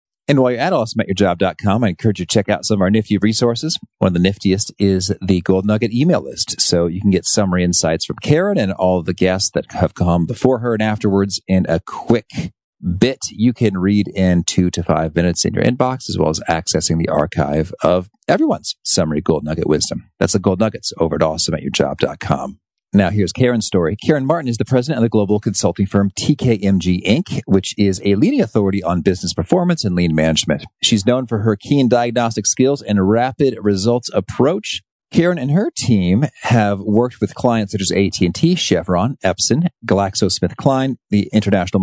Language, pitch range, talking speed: English, 90-115 Hz, 190 wpm